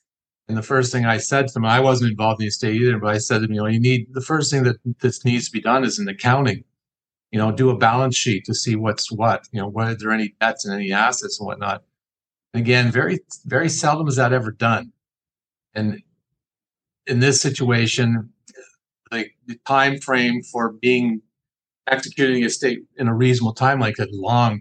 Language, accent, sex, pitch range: English, American, male, 110-130 Hz